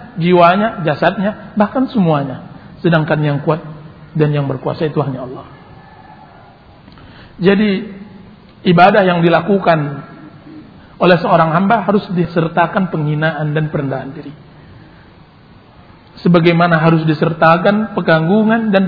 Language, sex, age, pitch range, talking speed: Indonesian, male, 50-69, 150-185 Hz, 100 wpm